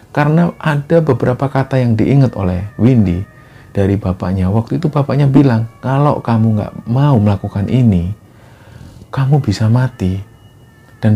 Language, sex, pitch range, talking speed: Indonesian, male, 95-120 Hz, 130 wpm